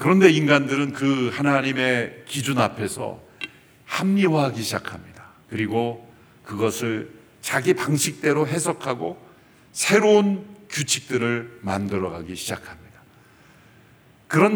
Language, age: Korean, 50-69